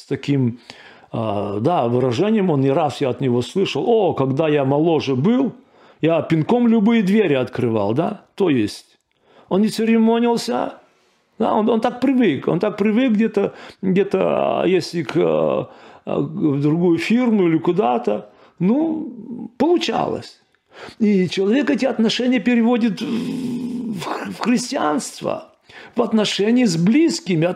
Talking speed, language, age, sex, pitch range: 115 wpm, Russian, 40-59, male, 155-230 Hz